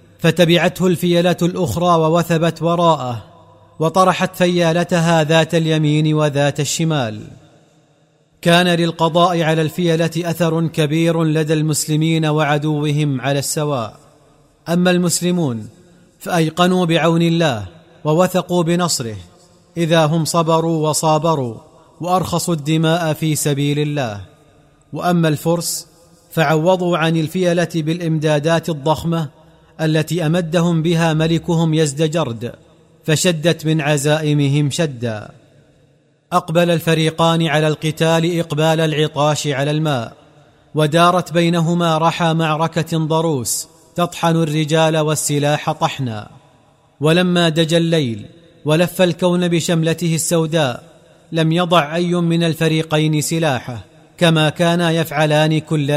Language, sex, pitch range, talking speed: Arabic, male, 150-170 Hz, 95 wpm